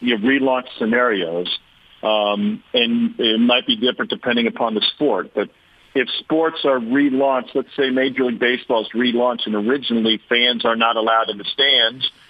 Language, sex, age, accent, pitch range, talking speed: English, male, 50-69, American, 115-145 Hz, 170 wpm